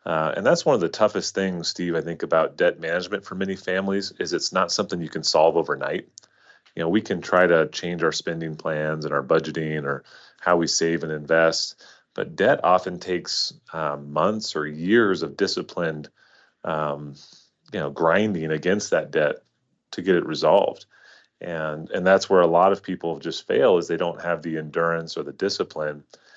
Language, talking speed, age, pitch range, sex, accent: English, 190 wpm, 30-49, 80-95 Hz, male, American